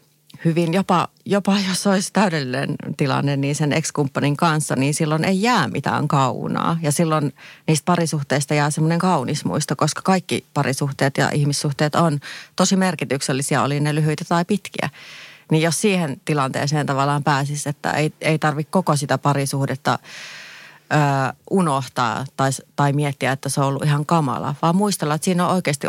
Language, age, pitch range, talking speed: Finnish, 30-49, 140-165 Hz, 160 wpm